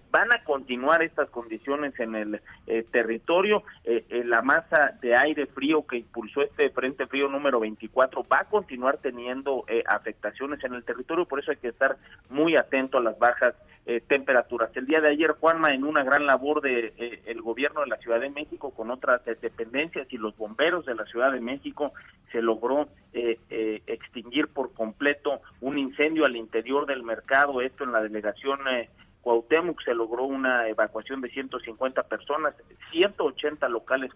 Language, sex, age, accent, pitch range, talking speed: Spanish, male, 40-59, Mexican, 115-145 Hz, 175 wpm